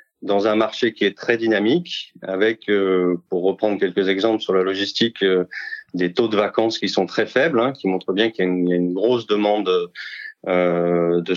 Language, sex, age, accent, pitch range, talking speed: French, male, 30-49, French, 95-125 Hz, 200 wpm